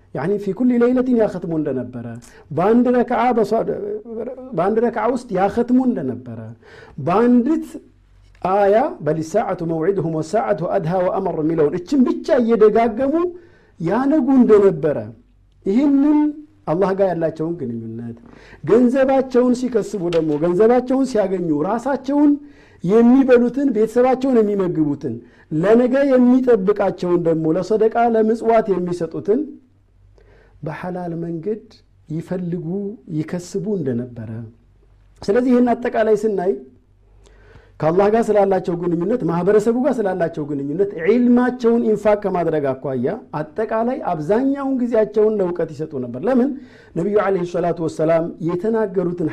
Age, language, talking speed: 50-69, Amharic, 90 wpm